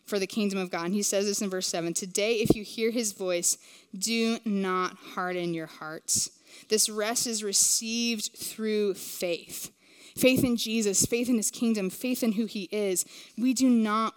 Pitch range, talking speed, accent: 205-255 Hz, 185 wpm, American